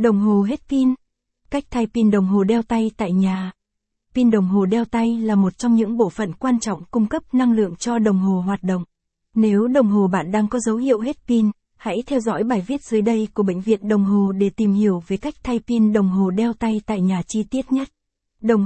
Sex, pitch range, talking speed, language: female, 195-235 Hz, 240 wpm, Vietnamese